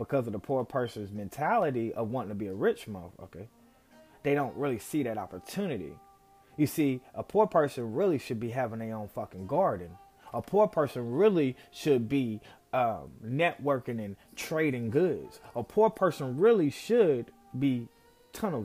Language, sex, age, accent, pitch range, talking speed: English, male, 30-49, American, 105-140 Hz, 160 wpm